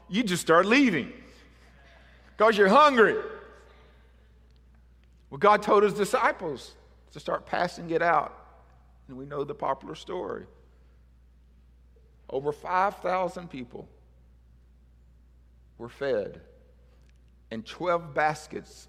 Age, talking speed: 50-69, 100 wpm